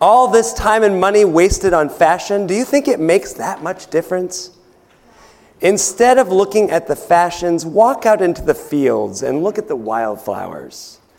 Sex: male